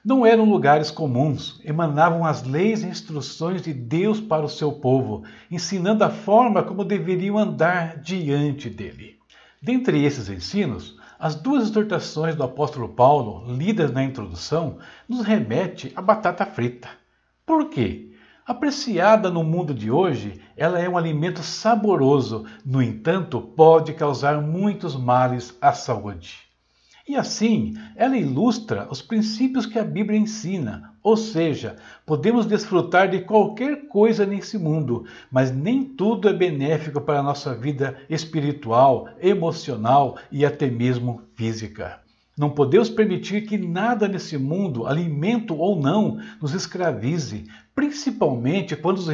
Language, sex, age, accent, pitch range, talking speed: Portuguese, male, 60-79, Brazilian, 135-205 Hz, 135 wpm